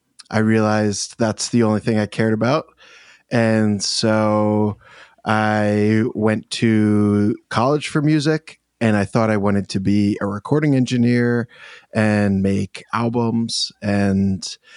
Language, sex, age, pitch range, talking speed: English, male, 20-39, 105-120 Hz, 125 wpm